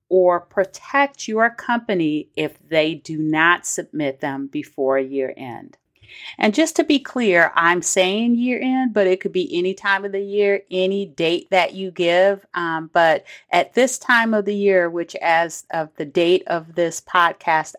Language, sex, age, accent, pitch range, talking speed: English, female, 40-59, American, 160-200 Hz, 175 wpm